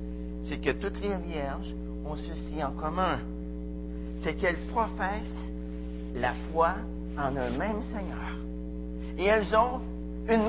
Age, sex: 50-69, male